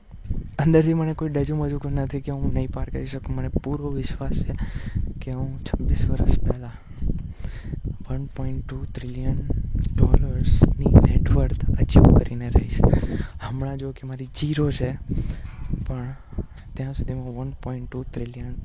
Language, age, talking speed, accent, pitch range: Gujarati, 20-39, 125 wpm, native, 100-140 Hz